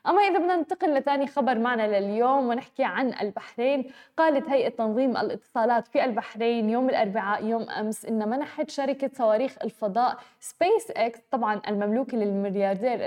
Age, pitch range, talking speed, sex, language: 10-29, 230-275 Hz, 140 wpm, female, Arabic